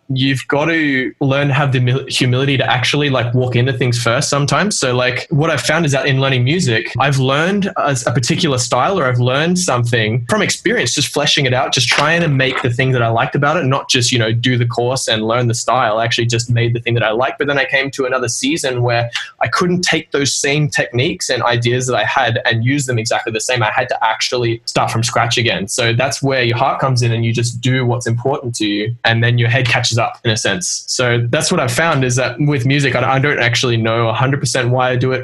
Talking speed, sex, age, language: 250 wpm, male, 20-39, English